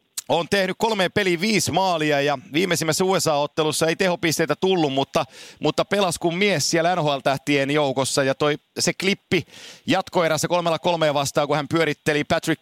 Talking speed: 160 wpm